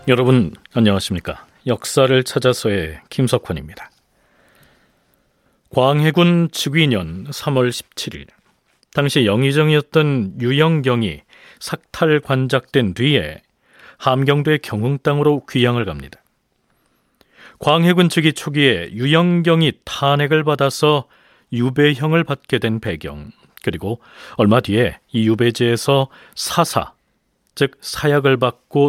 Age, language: 40-59, Korean